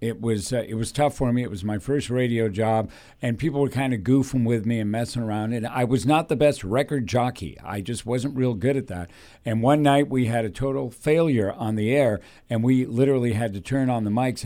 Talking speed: 250 wpm